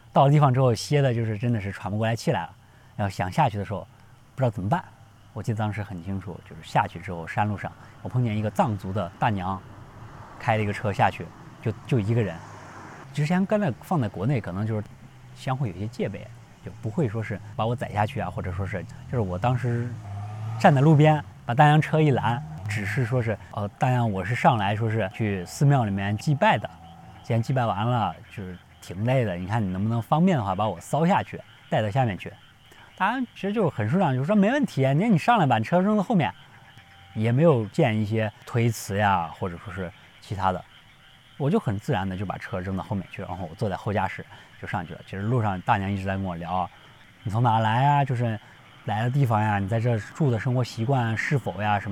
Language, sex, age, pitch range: Chinese, male, 20-39, 100-130 Hz